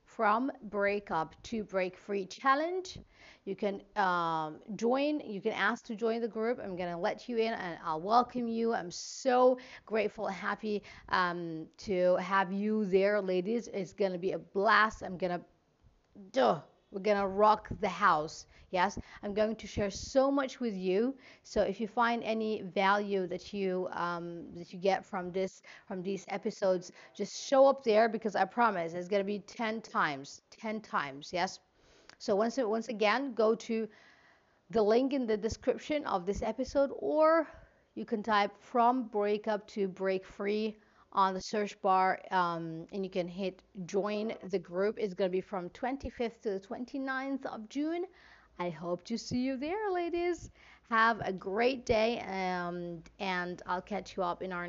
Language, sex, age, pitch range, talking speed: English, female, 40-59, 185-230 Hz, 175 wpm